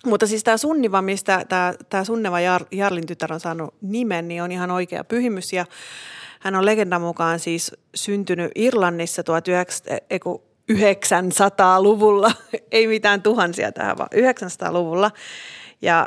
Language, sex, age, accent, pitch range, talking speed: Finnish, female, 30-49, native, 175-220 Hz, 125 wpm